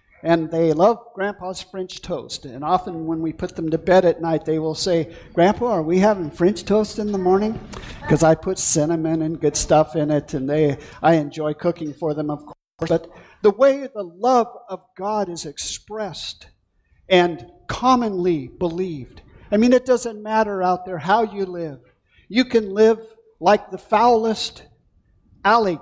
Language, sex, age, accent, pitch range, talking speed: English, male, 50-69, American, 165-215 Hz, 175 wpm